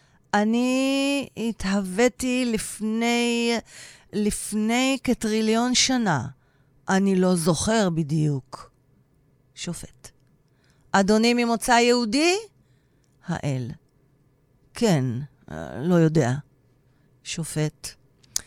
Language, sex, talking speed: Hebrew, female, 60 wpm